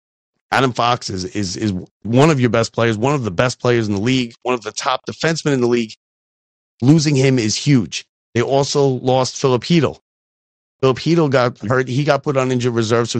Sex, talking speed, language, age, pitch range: male, 210 wpm, English, 30-49, 110-135 Hz